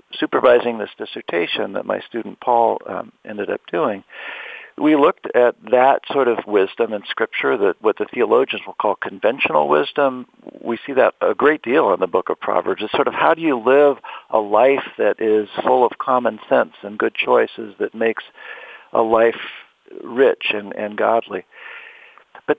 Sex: male